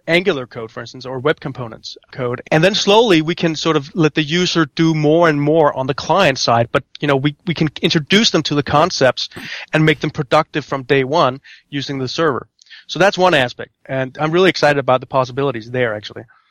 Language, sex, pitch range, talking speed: English, male, 135-170 Hz, 220 wpm